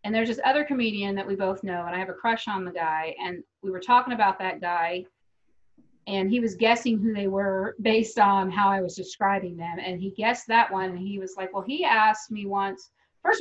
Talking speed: 235 wpm